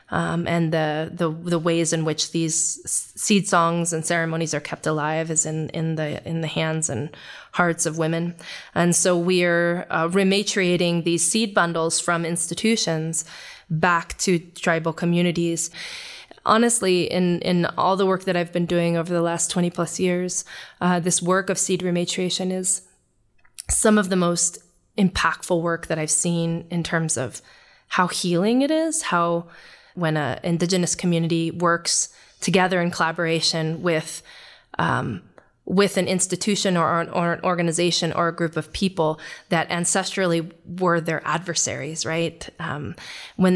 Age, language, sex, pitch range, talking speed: 20-39, English, female, 165-180 Hz, 155 wpm